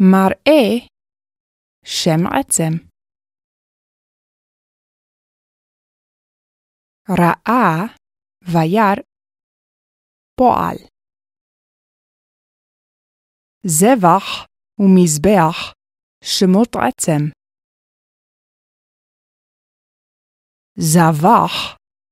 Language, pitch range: Hebrew, 165-220 Hz